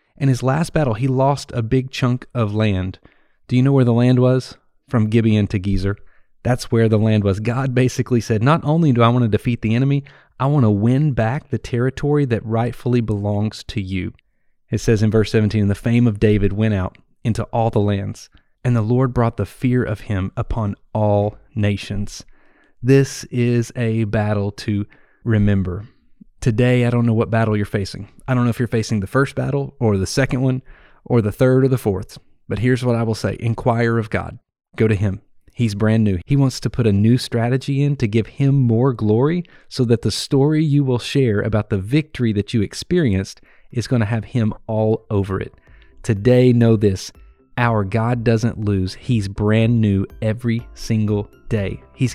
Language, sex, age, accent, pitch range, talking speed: English, male, 30-49, American, 105-125 Hz, 200 wpm